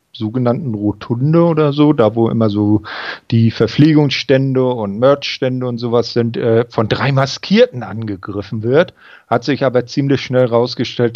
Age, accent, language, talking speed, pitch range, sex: 40-59, German, German, 145 wpm, 110-140 Hz, male